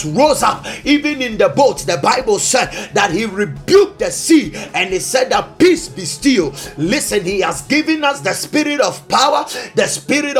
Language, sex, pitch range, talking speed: English, male, 225-305 Hz, 185 wpm